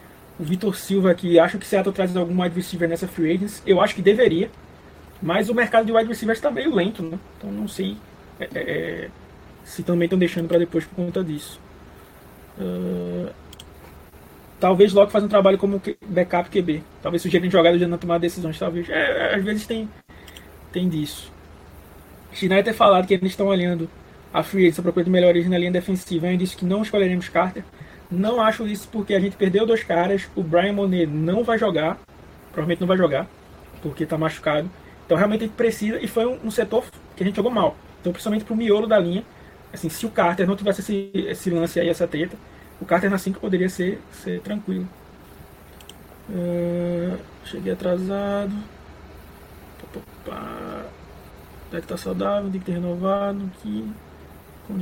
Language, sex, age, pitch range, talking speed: Portuguese, male, 20-39, 160-200 Hz, 180 wpm